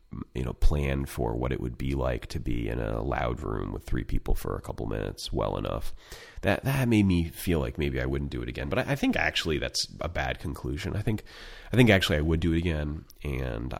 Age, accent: 30-49, American